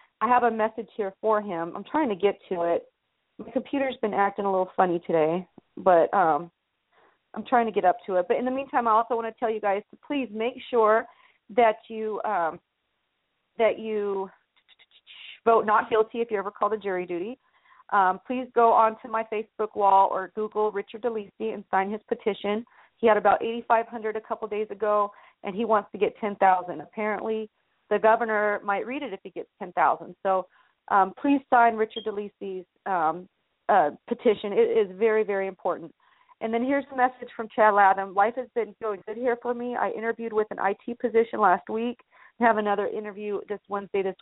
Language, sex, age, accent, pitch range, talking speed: English, female, 40-59, American, 200-230 Hz, 200 wpm